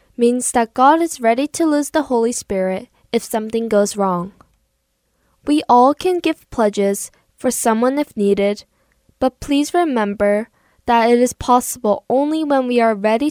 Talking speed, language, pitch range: 160 wpm, English, 200-270 Hz